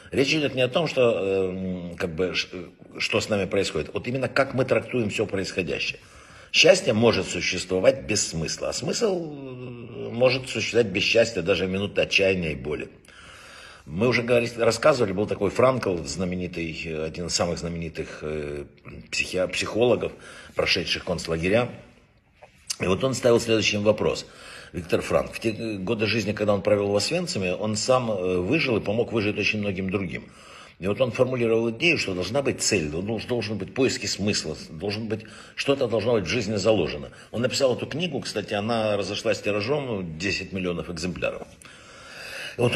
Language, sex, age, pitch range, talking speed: Russian, male, 60-79, 90-120 Hz, 155 wpm